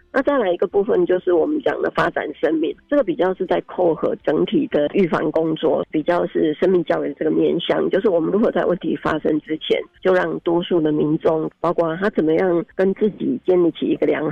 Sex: female